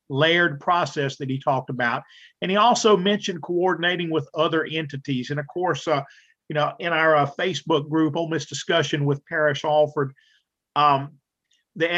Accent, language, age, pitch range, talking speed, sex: American, English, 50-69, 145-170 Hz, 165 wpm, male